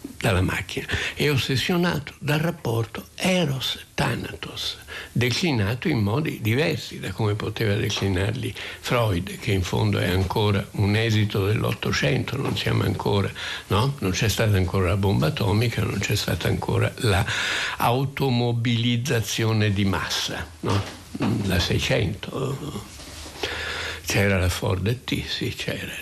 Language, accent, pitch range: Italian, native, 100-120 Hz